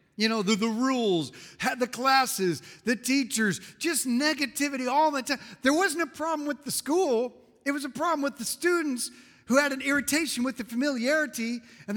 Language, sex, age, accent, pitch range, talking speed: English, male, 50-69, American, 185-275 Hz, 185 wpm